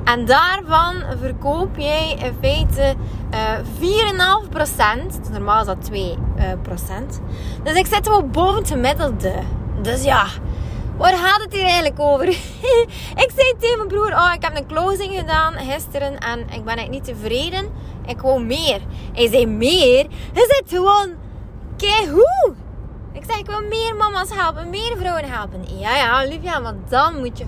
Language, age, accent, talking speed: Dutch, 20-39, Dutch, 165 wpm